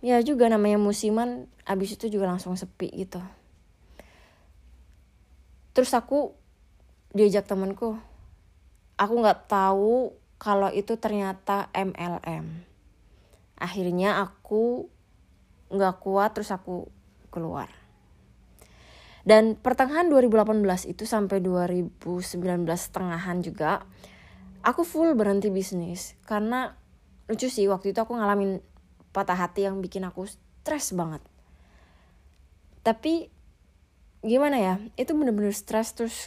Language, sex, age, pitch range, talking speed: Indonesian, female, 20-39, 170-220 Hz, 100 wpm